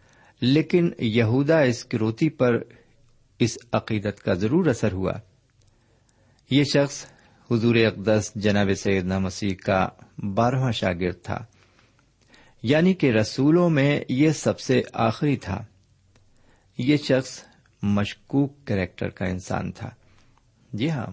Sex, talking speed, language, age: male, 115 wpm, Urdu, 50-69